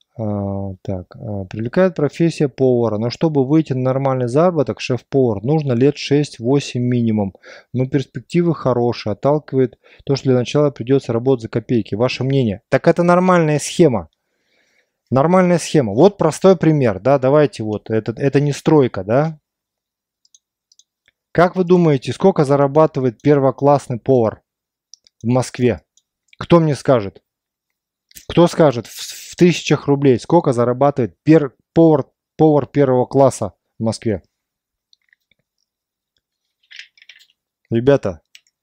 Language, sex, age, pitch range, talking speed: Russian, male, 20-39, 115-150 Hz, 110 wpm